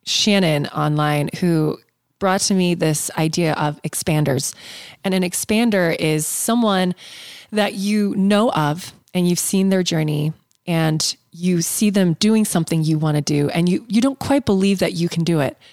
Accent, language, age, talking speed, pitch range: American, English, 20-39, 170 wpm, 155-200 Hz